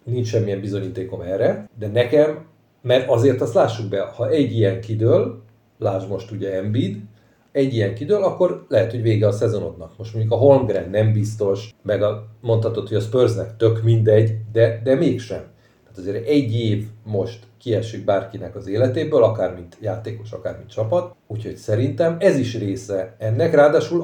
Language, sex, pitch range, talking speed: Hungarian, male, 105-120 Hz, 165 wpm